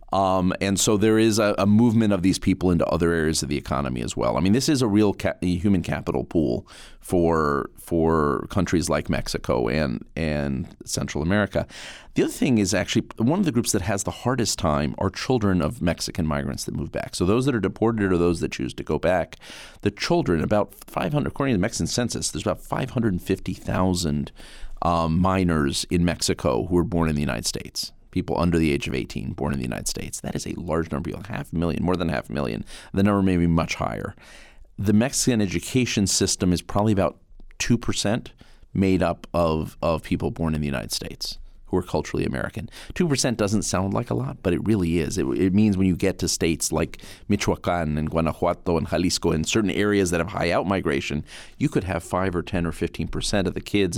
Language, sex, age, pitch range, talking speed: English, male, 40-59, 80-100 Hz, 210 wpm